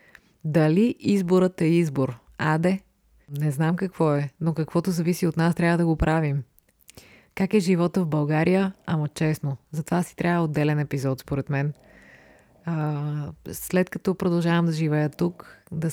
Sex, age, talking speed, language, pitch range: female, 20-39, 150 wpm, Bulgarian, 150-175 Hz